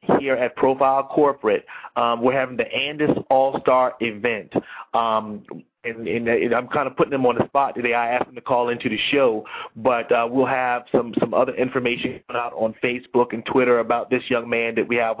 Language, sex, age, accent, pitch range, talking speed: English, male, 30-49, American, 120-135 Hz, 210 wpm